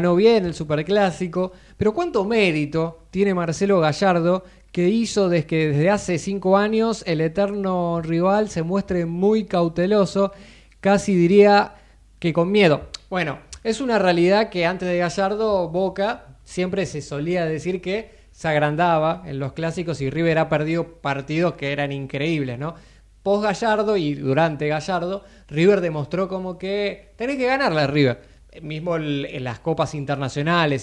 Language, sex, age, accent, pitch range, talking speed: Spanish, male, 20-39, Argentinian, 150-195 Hz, 150 wpm